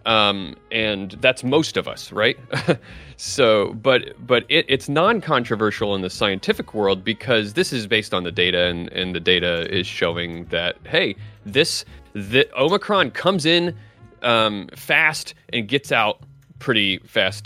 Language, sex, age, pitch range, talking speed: English, male, 30-49, 100-130 Hz, 150 wpm